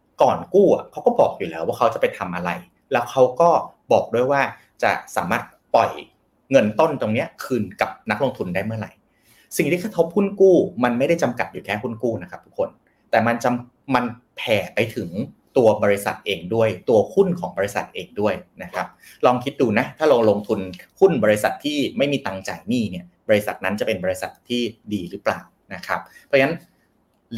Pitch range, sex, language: 100-140 Hz, male, Thai